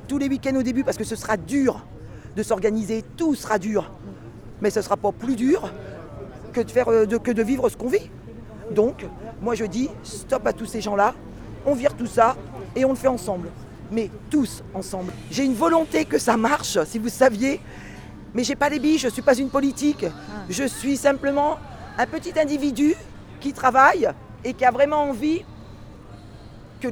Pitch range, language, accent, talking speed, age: 215-275 Hz, French, French, 190 wpm, 40-59